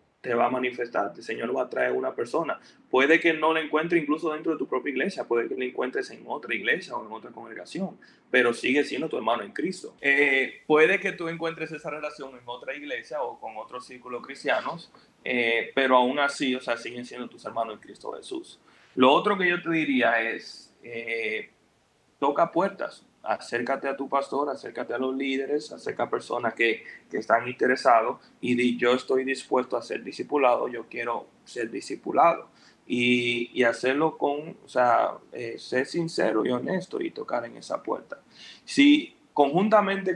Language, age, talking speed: Spanish, 20-39, 185 wpm